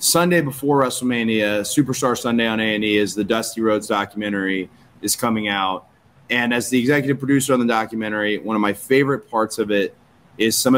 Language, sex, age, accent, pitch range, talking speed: English, male, 20-39, American, 110-130 Hz, 185 wpm